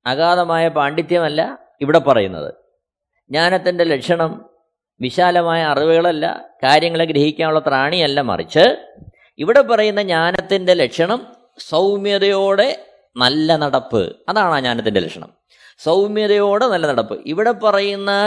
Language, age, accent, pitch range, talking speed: Malayalam, 20-39, native, 160-210 Hz, 90 wpm